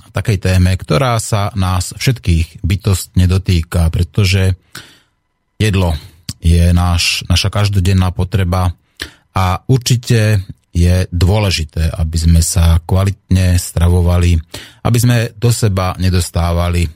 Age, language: 30-49, Slovak